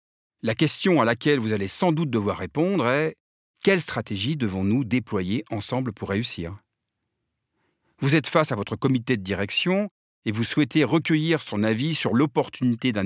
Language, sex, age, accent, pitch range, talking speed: French, male, 40-59, French, 105-155 Hz, 160 wpm